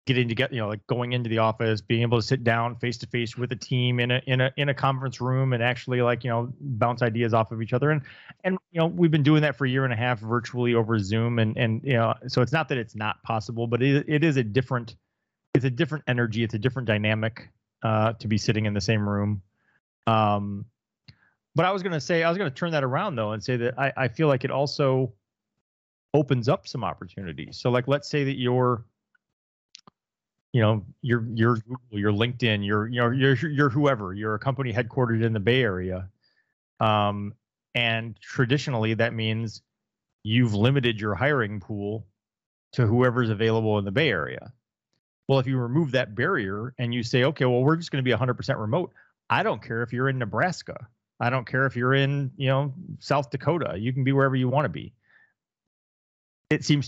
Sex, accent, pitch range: male, American, 110-135 Hz